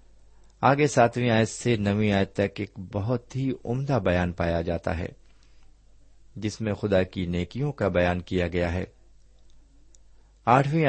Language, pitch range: Urdu, 95-130 Hz